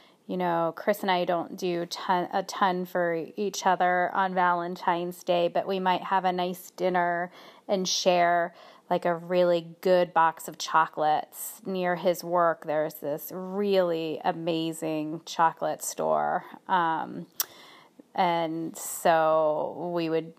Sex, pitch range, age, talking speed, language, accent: female, 165-190 Hz, 30-49, 135 wpm, English, American